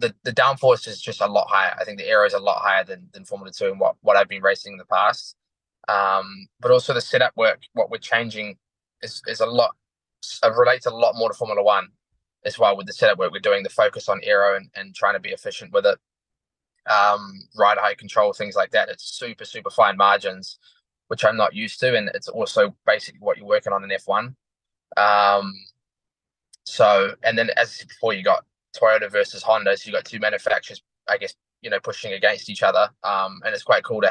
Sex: male